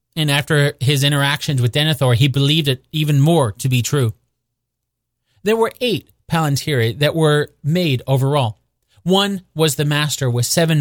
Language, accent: English, American